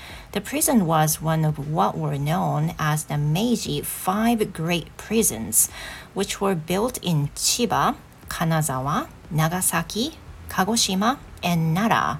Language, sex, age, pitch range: Japanese, female, 40-59, 150-200 Hz